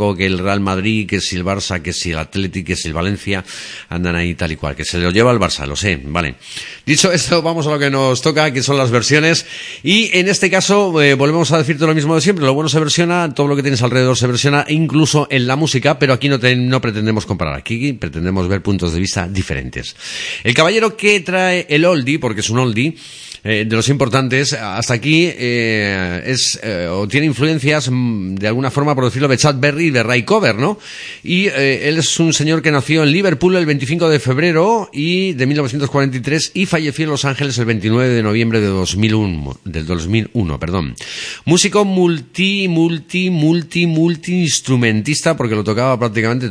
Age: 40-59